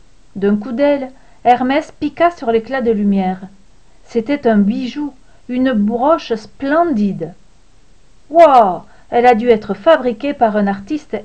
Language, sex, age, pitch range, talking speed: French, female, 50-69, 210-265 Hz, 130 wpm